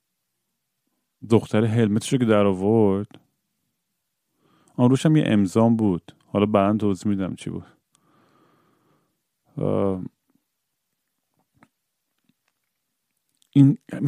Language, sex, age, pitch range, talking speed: Persian, male, 40-59, 100-125 Hz, 70 wpm